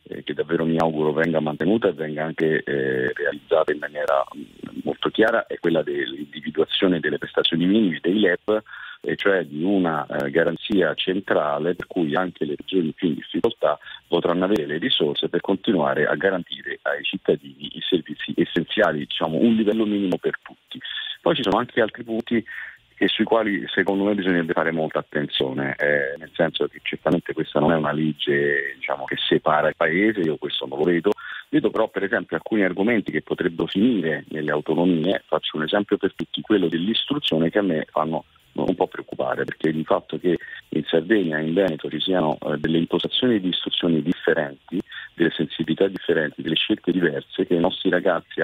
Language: Italian